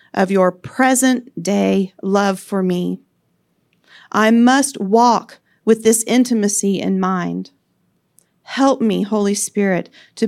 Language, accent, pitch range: English, American, 190-240 Hz